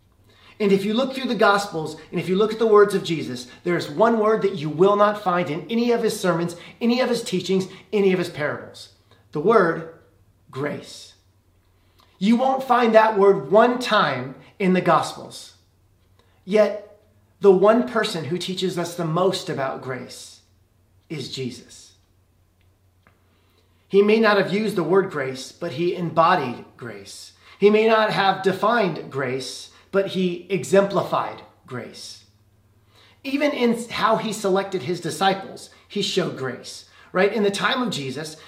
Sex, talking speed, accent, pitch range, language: male, 160 wpm, American, 125-210 Hz, English